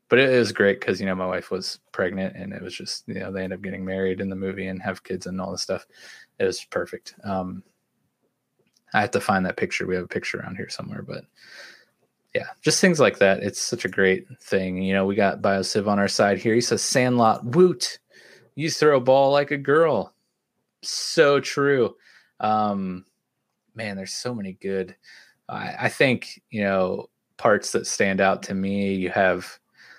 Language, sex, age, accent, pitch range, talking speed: English, male, 20-39, American, 95-110 Hz, 200 wpm